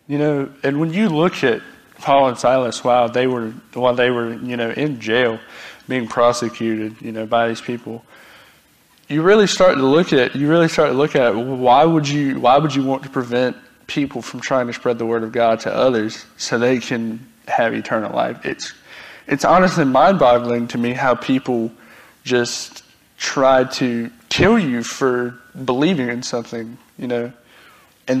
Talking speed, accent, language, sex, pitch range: 185 wpm, American, English, male, 120-140 Hz